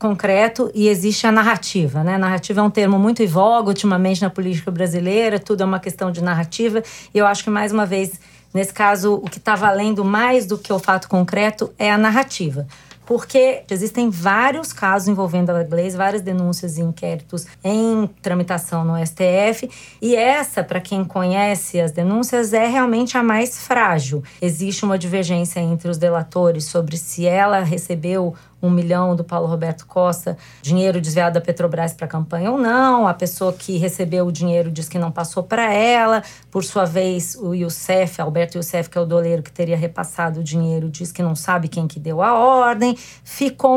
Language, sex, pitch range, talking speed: Portuguese, female, 170-210 Hz, 185 wpm